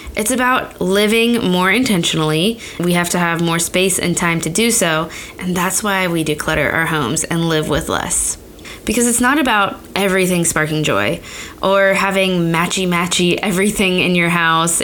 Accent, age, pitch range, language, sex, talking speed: American, 20-39, 165-205 Hz, English, female, 165 wpm